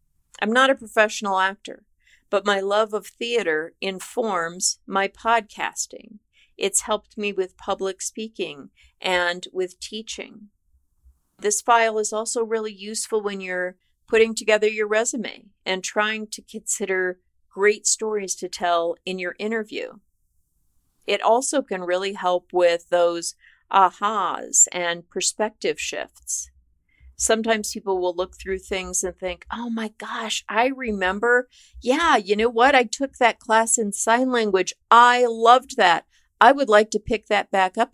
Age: 50-69